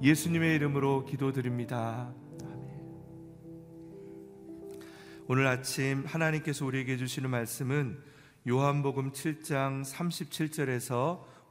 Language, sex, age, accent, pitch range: Korean, male, 40-59, native, 120-140 Hz